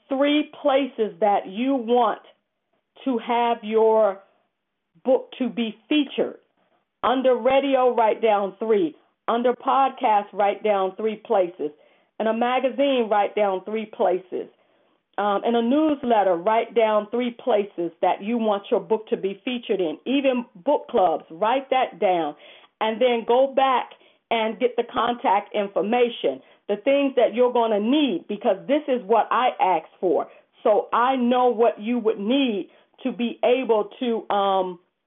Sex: female